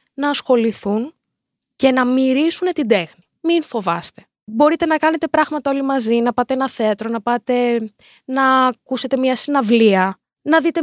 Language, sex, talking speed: Greek, female, 150 wpm